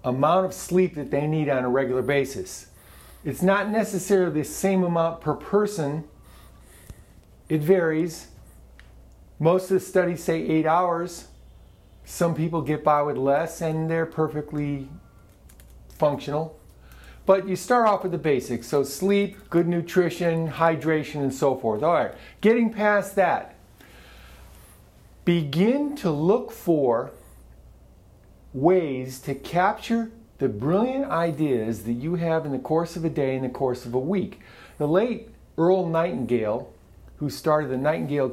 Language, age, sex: English, 50-69, male